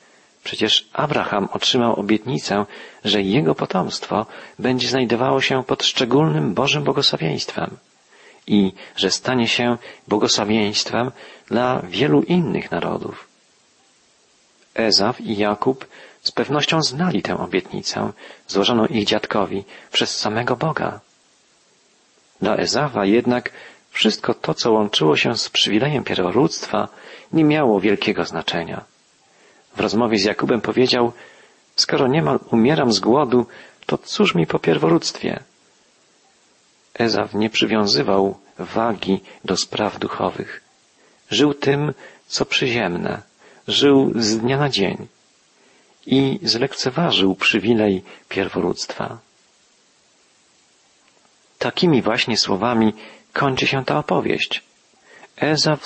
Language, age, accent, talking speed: Polish, 40-59, native, 100 wpm